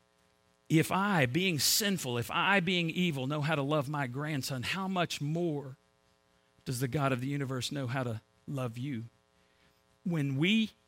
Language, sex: English, male